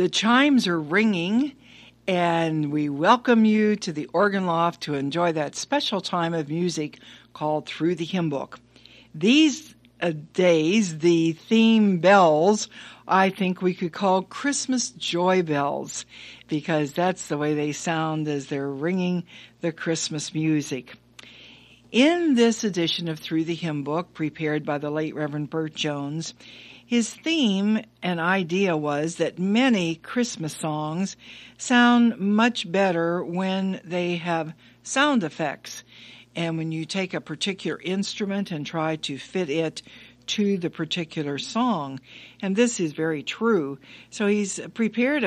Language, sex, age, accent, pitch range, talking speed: English, female, 60-79, American, 155-195 Hz, 140 wpm